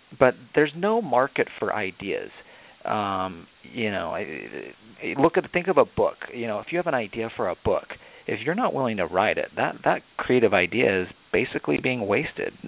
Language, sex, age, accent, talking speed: English, male, 40-59, American, 190 wpm